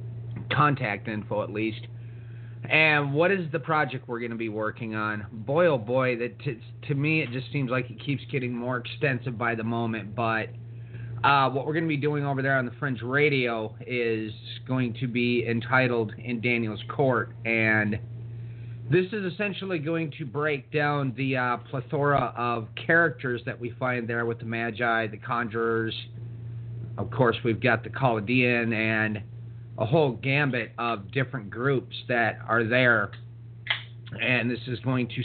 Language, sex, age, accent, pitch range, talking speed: English, male, 30-49, American, 115-130 Hz, 170 wpm